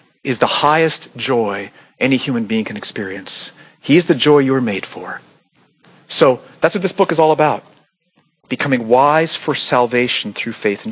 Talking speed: 175 wpm